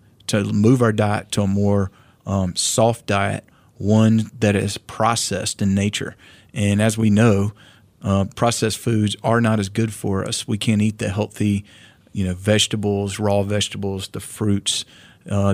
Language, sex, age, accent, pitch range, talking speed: English, male, 40-59, American, 100-115 Hz, 160 wpm